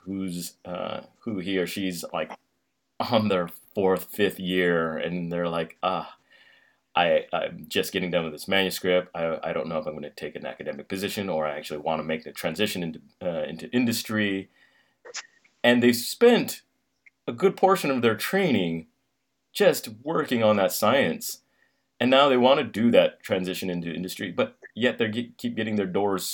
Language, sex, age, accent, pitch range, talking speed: English, male, 30-49, American, 85-110 Hz, 180 wpm